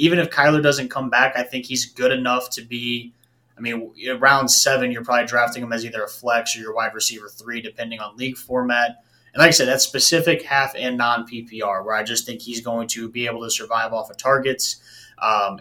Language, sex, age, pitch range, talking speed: English, male, 20-39, 115-130 Hz, 225 wpm